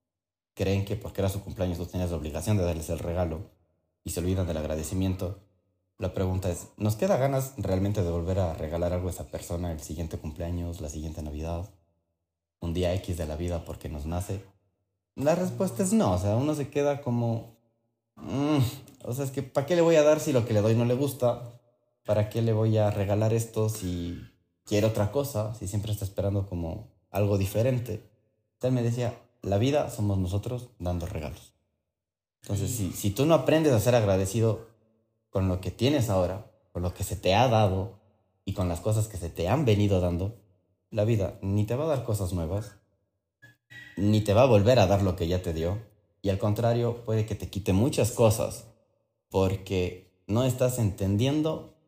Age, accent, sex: 30-49, Mexican, male